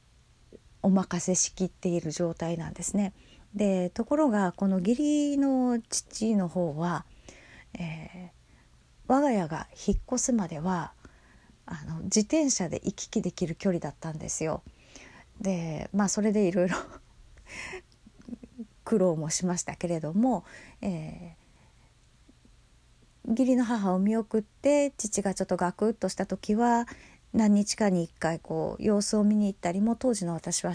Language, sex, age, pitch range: Japanese, female, 40-59, 180-240 Hz